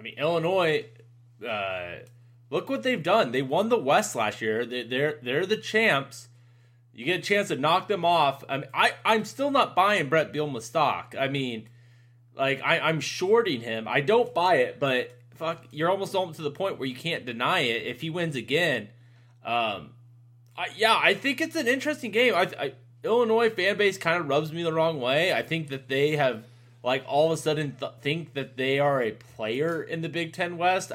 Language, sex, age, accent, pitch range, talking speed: English, male, 20-39, American, 120-175 Hz, 210 wpm